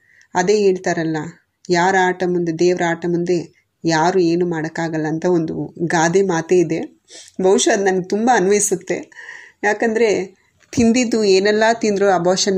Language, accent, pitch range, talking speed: Kannada, native, 175-200 Hz, 120 wpm